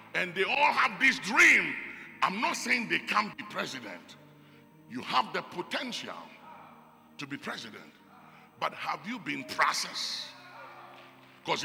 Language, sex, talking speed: English, male, 135 wpm